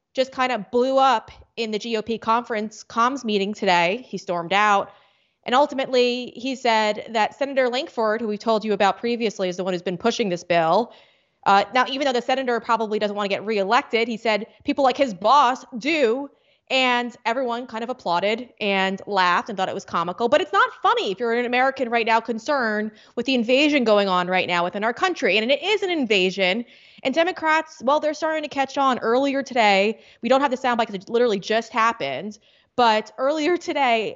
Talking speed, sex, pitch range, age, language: 205 wpm, female, 215-275 Hz, 20-39, English